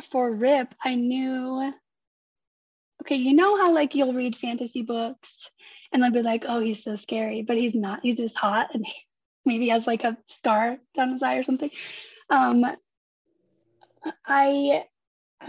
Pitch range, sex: 240-285 Hz, female